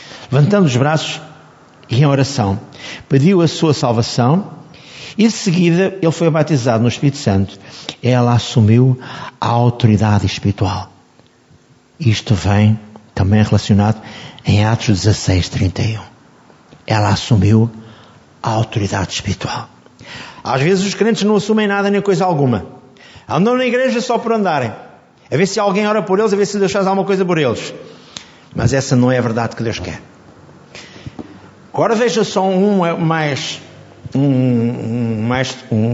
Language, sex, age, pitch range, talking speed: Portuguese, male, 50-69, 120-170 Hz, 145 wpm